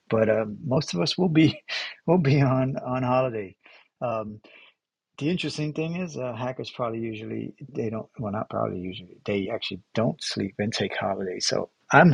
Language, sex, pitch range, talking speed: English, male, 120-160 Hz, 180 wpm